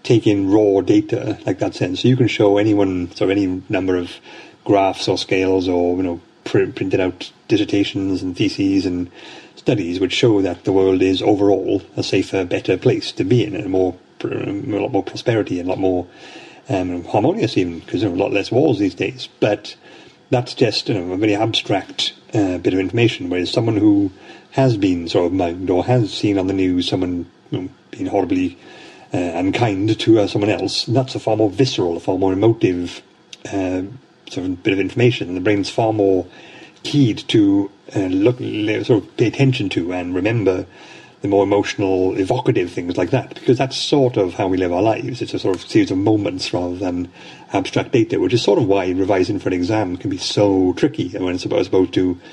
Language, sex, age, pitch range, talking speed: English, male, 30-49, 90-115 Hz, 205 wpm